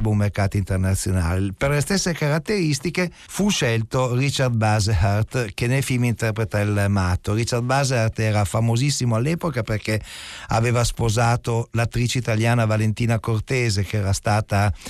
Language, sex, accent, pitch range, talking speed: Italian, male, native, 100-130 Hz, 130 wpm